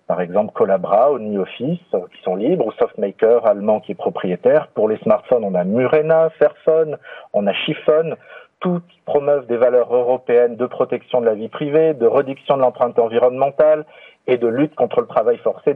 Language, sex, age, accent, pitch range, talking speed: French, male, 40-59, French, 120-160 Hz, 185 wpm